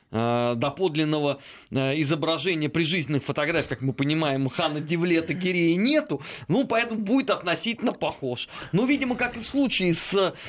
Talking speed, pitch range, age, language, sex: 145 wpm, 130-185 Hz, 20-39, Russian, male